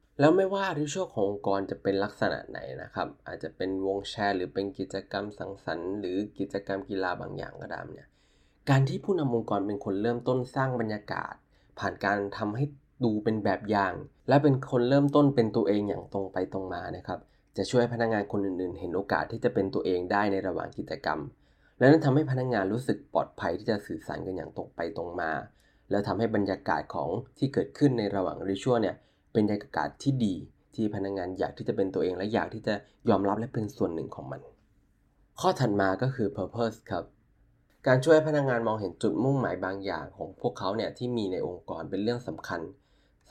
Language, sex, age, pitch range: Thai, male, 20-39, 95-125 Hz